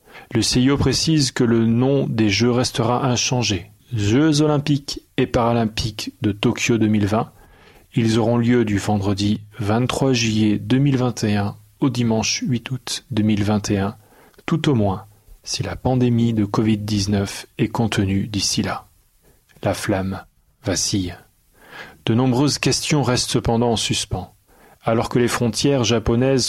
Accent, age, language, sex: French, 30-49, French, male